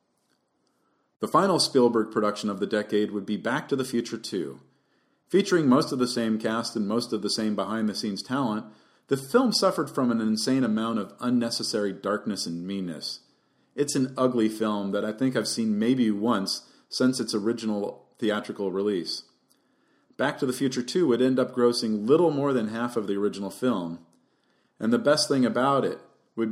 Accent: American